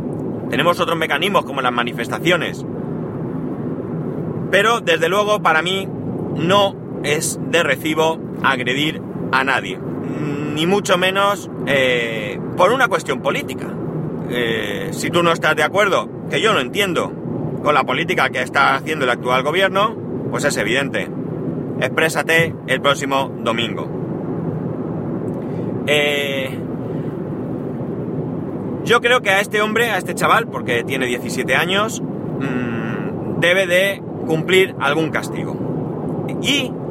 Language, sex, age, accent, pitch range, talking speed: Spanish, male, 30-49, Spanish, 145-195 Hz, 120 wpm